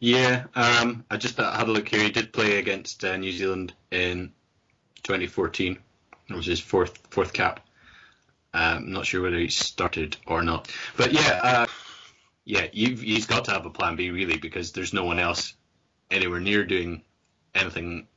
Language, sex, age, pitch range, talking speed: English, male, 20-39, 85-100 Hz, 180 wpm